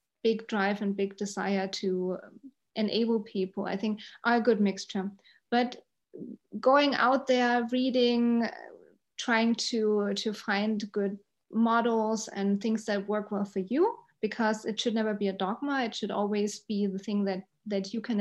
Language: English